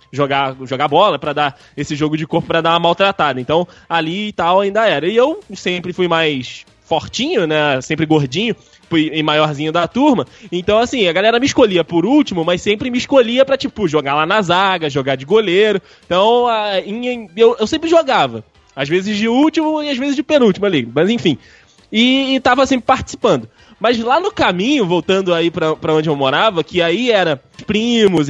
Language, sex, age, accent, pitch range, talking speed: Portuguese, male, 20-39, Brazilian, 160-240 Hz, 195 wpm